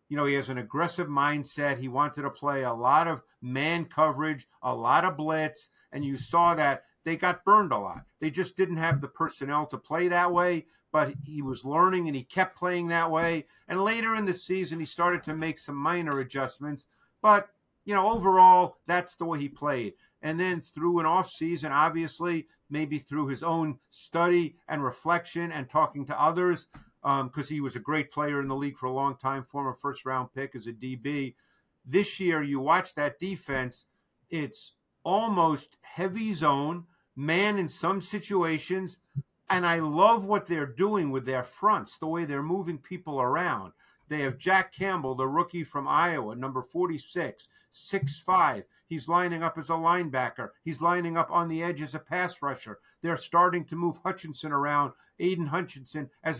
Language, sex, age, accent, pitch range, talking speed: English, male, 50-69, American, 140-175 Hz, 185 wpm